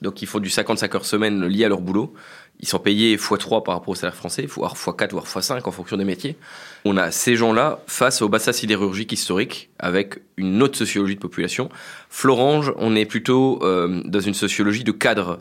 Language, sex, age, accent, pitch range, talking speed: French, male, 20-39, French, 95-120 Hz, 205 wpm